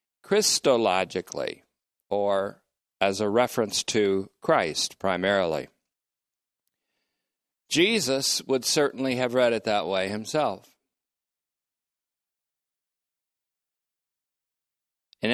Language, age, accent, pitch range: English, 50-69, American, 100-130 Hz